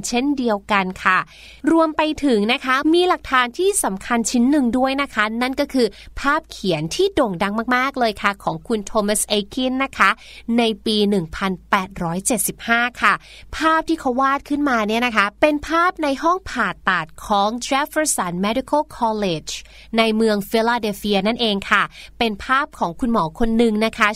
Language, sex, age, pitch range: Thai, female, 30-49, 210-290 Hz